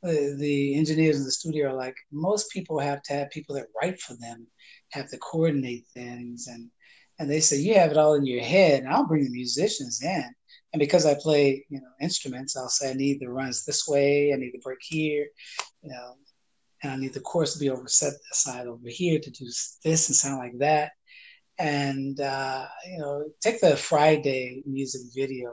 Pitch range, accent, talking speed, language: 125-150 Hz, American, 205 wpm, English